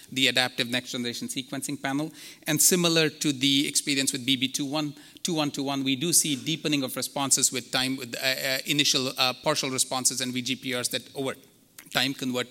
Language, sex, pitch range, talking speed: English, male, 130-150 Hz, 165 wpm